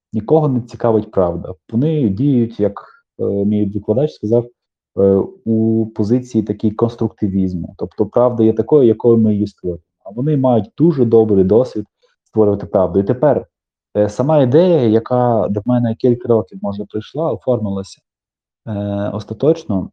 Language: Ukrainian